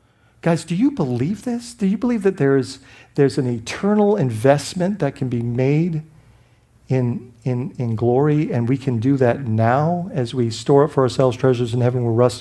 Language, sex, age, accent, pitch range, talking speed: English, male, 50-69, American, 115-150 Hz, 195 wpm